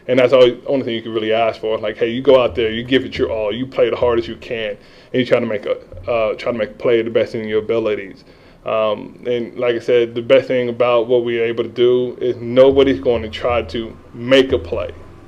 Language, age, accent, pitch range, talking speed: English, 20-39, American, 115-135 Hz, 260 wpm